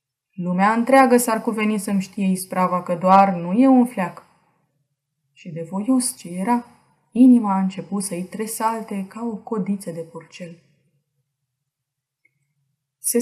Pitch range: 170-225 Hz